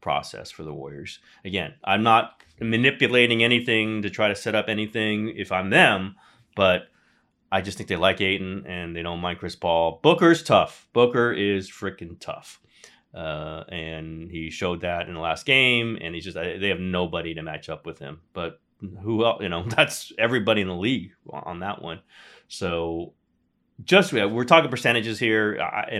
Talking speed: 180 wpm